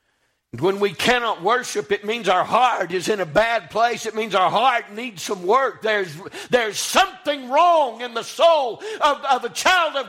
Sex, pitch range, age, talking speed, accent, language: male, 145-235 Hz, 60-79, 190 wpm, American, English